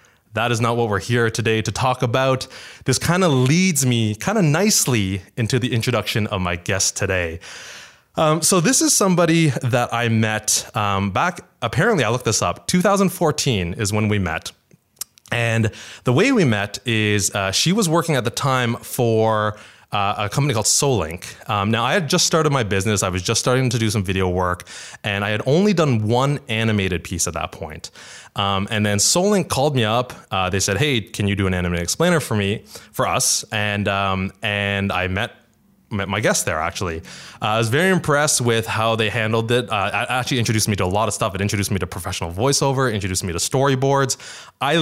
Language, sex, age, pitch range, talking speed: English, male, 20-39, 100-130 Hz, 205 wpm